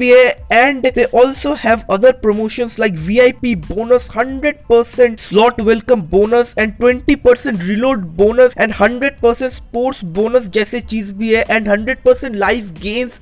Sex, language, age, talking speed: male, Hindi, 20-39, 85 wpm